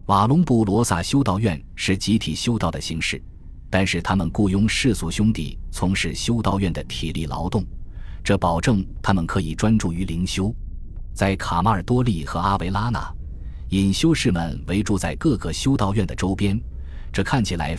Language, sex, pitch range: Chinese, male, 80-110 Hz